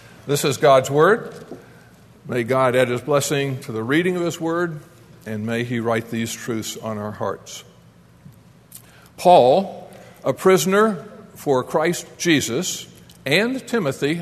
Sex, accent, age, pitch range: male, American, 50-69, 125-175 Hz